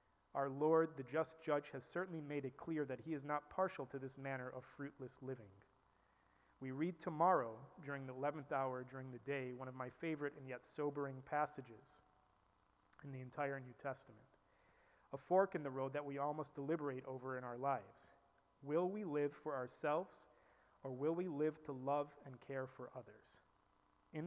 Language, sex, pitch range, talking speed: English, male, 130-150 Hz, 180 wpm